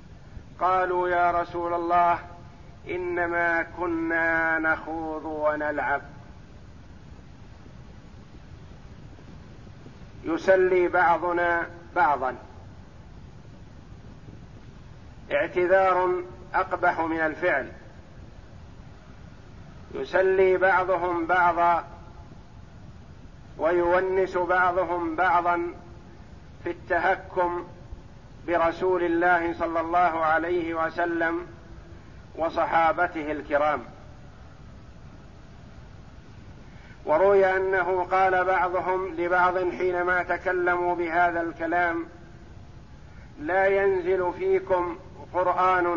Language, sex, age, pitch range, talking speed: Arabic, male, 50-69, 160-180 Hz, 55 wpm